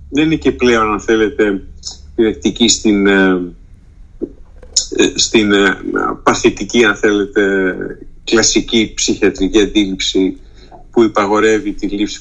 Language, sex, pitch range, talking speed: Greek, male, 95-135 Hz, 95 wpm